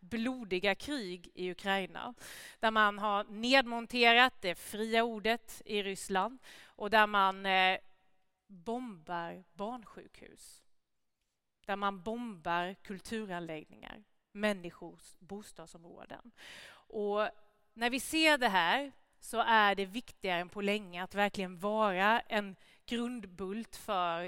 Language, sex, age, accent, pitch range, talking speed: English, female, 30-49, Swedish, 190-235 Hz, 105 wpm